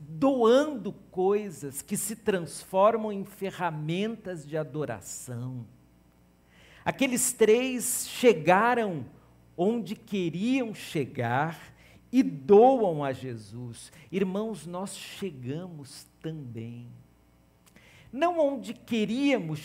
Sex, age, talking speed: male, 50-69, 80 wpm